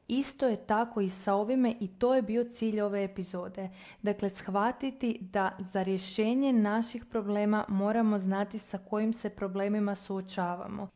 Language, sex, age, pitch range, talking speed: Croatian, female, 20-39, 200-235 Hz, 150 wpm